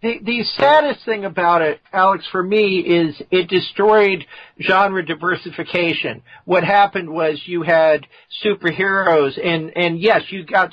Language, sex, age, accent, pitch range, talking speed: English, male, 50-69, American, 150-190 Hz, 140 wpm